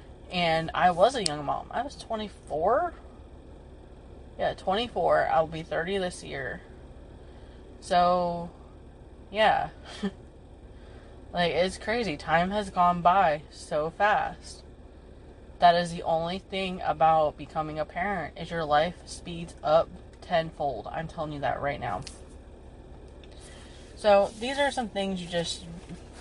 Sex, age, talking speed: female, 20-39, 125 wpm